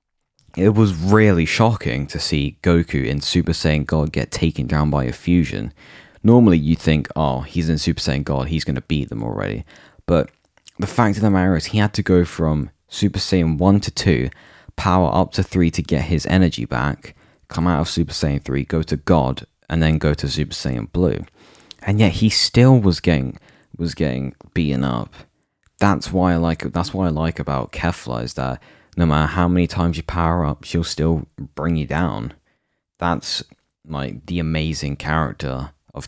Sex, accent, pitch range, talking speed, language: male, British, 75-90 Hz, 190 wpm, English